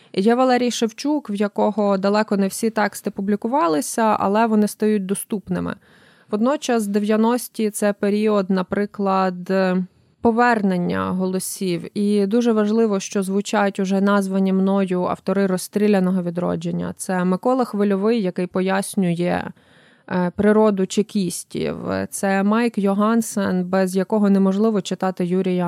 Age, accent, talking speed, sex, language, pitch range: 20-39, native, 110 wpm, female, Ukrainian, 190-215 Hz